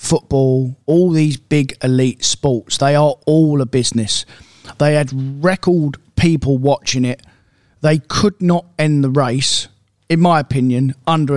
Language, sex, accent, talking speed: English, male, British, 145 wpm